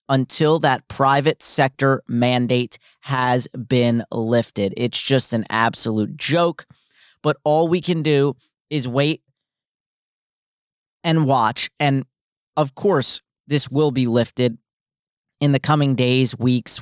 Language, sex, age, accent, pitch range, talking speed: English, male, 30-49, American, 125-145 Hz, 120 wpm